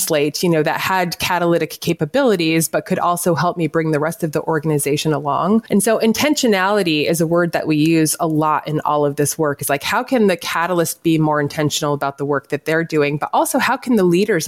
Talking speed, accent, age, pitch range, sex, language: 230 wpm, American, 20-39, 160-200 Hz, female, English